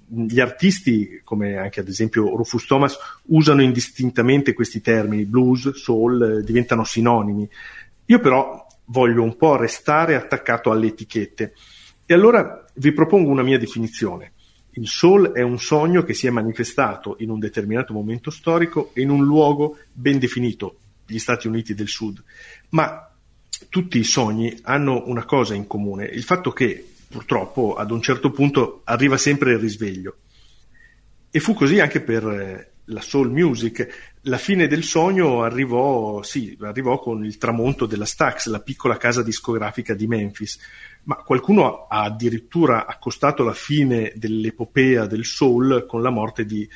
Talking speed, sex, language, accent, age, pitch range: 150 wpm, male, Italian, native, 40-59, 110-135 Hz